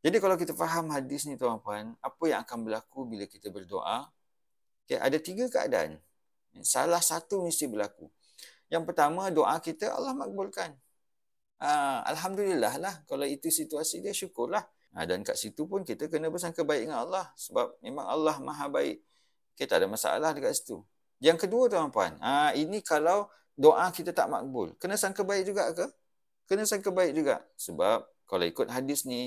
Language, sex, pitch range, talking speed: English, male, 115-185 Hz, 170 wpm